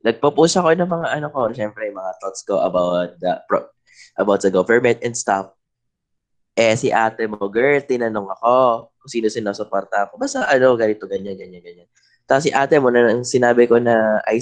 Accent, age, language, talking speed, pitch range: Filipino, 20-39, English, 170 wpm, 115-165 Hz